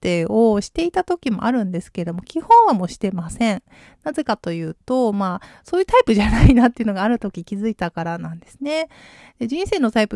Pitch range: 190-280 Hz